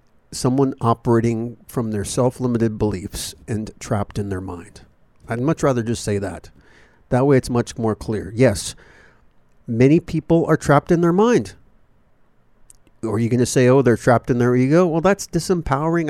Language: English